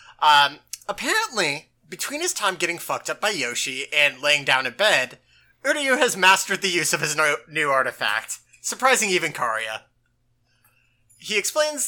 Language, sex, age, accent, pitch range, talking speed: English, male, 30-49, American, 130-190 Hz, 145 wpm